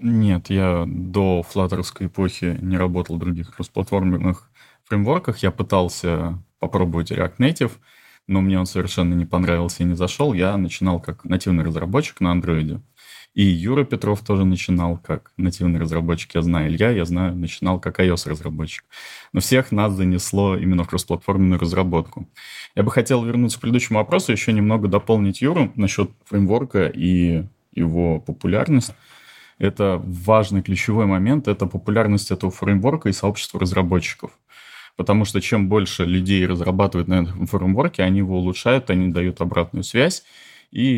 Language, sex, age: Russian, male, 20-39